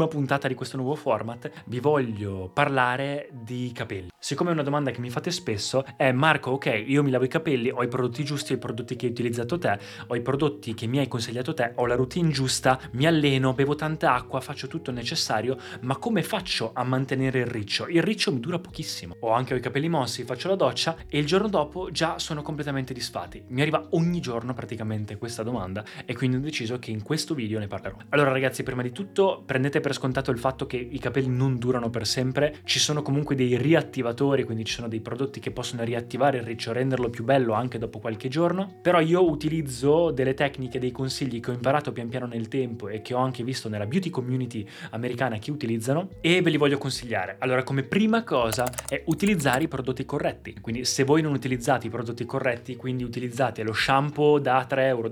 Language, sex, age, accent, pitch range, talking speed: Italian, male, 20-39, native, 120-145 Hz, 215 wpm